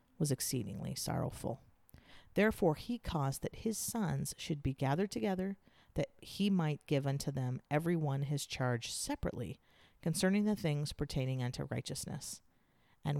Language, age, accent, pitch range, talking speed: English, 40-59, American, 140-180 Hz, 140 wpm